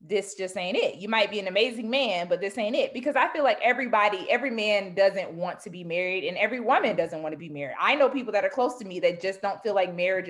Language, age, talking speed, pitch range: English, 20-39, 280 wpm, 185-245 Hz